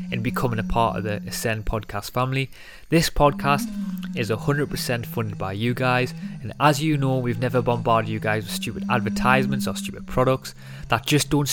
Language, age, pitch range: English, 20-39, 100-145 Hz